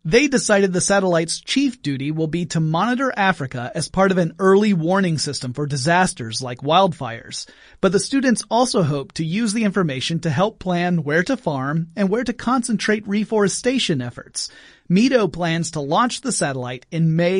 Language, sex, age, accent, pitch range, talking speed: English, male, 30-49, American, 160-220 Hz, 175 wpm